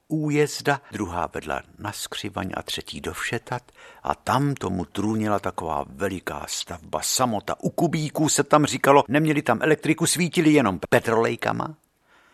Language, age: Czech, 60-79